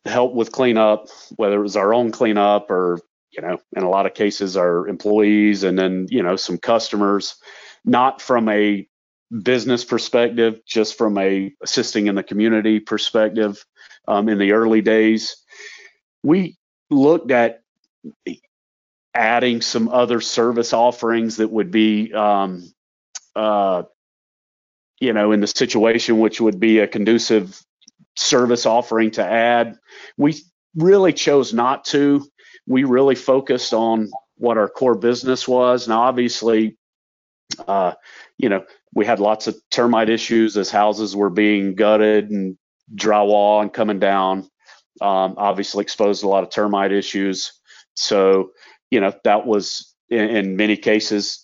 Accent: American